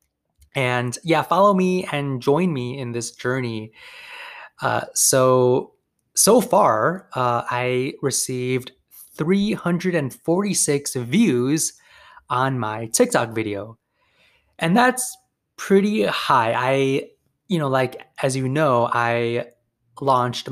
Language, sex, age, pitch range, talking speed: English, male, 20-39, 120-150 Hz, 105 wpm